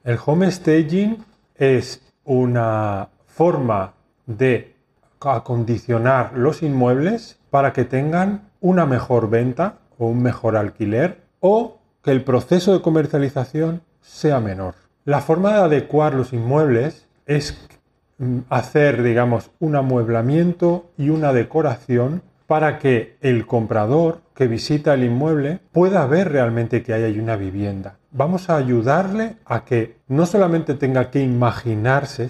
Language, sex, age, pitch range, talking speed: Spanish, male, 40-59, 120-155 Hz, 125 wpm